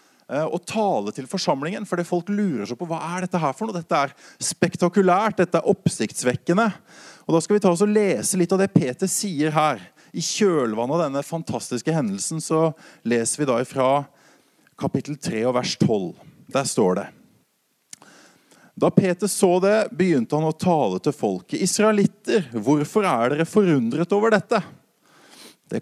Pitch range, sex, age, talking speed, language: 150-195 Hz, male, 30-49, 170 wpm, English